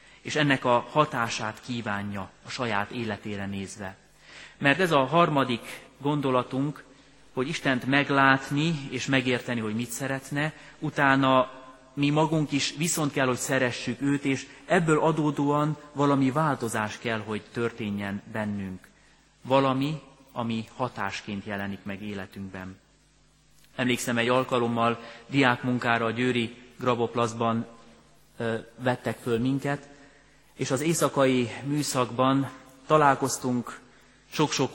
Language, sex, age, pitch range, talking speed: Hungarian, male, 30-49, 115-140 Hz, 110 wpm